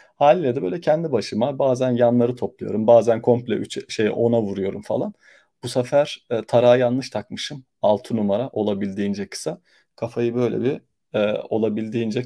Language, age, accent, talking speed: Turkish, 40-59, native, 140 wpm